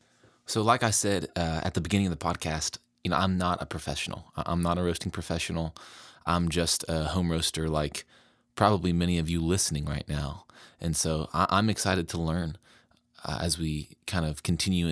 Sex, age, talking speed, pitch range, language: male, 20-39, 195 wpm, 80-90 Hz, English